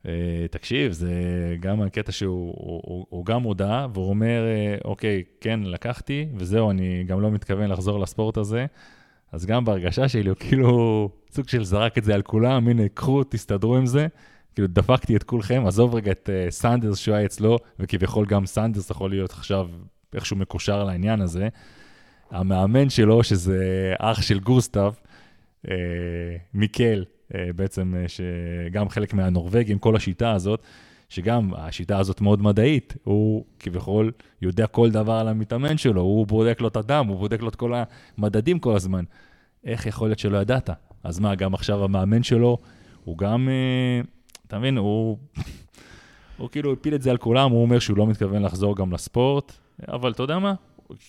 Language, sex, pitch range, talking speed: Hebrew, male, 95-120 Hz, 165 wpm